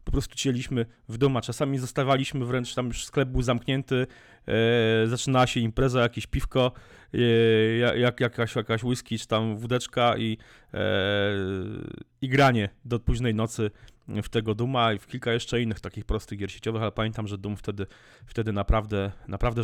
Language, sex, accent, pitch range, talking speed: Polish, male, native, 110-135 Hz, 155 wpm